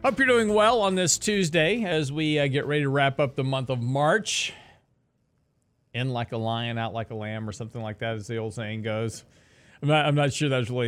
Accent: American